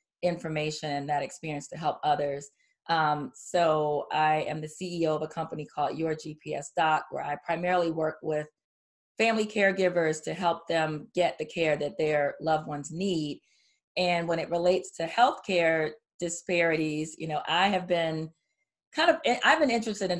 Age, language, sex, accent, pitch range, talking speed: 30-49, English, female, American, 155-190 Hz, 165 wpm